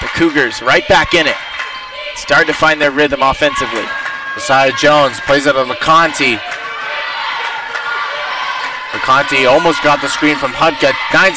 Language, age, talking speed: English, 30-49, 135 wpm